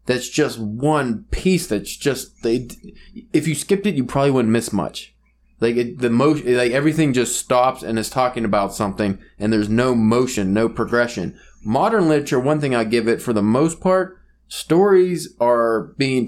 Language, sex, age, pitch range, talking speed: English, male, 20-39, 110-135 Hz, 180 wpm